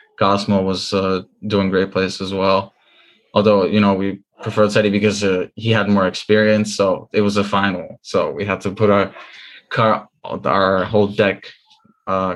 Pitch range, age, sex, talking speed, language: 100-115 Hz, 20-39, male, 175 wpm, English